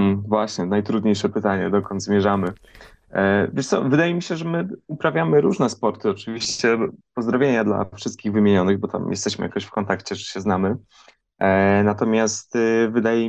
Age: 20-39